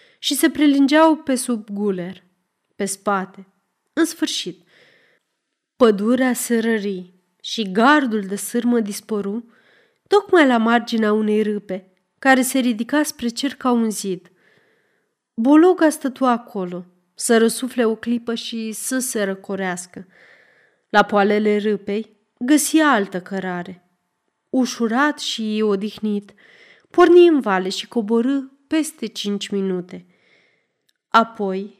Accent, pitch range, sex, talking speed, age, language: native, 200-260 Hz, female, 110 wpm, 30-49, Romanian